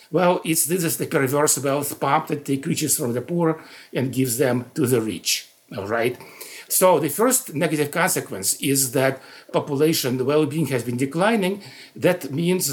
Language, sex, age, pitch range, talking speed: English, male, 50-69, 125-160 Hz, 175 wpm